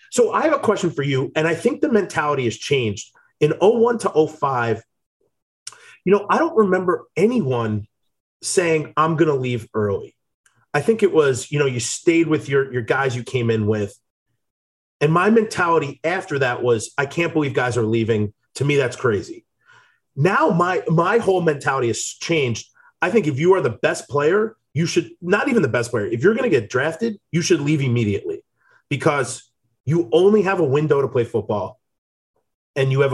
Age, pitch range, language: 30-49, 125-205 Hz, English